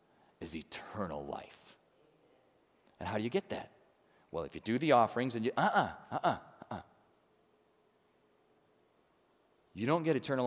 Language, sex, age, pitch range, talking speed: English, male, 30-49, 145-225 Hz, 145 wpm